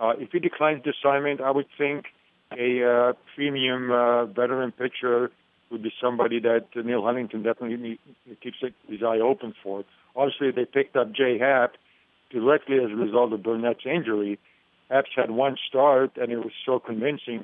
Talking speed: 170 wpm